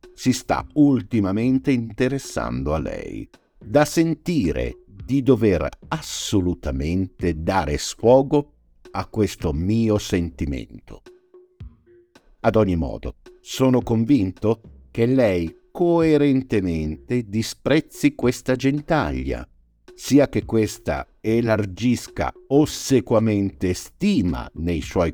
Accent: native